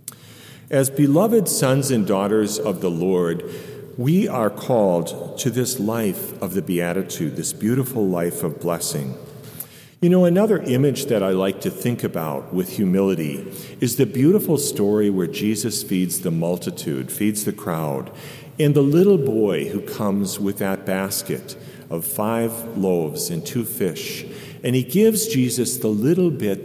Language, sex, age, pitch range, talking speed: English, male, 50-69, 95-135 Hz, 155 wpm